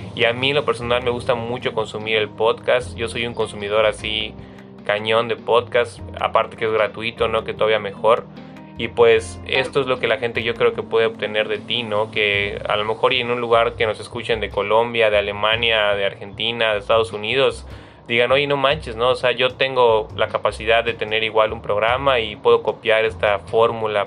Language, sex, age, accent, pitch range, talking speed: Spanish, male, 20-39, Mexican, 105-135 Hz, 205 wpm